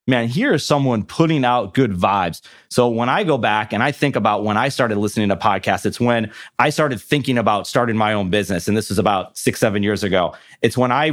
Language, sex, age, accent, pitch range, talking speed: English, male, 30-49, American, 110-135 Hz, 235 wpm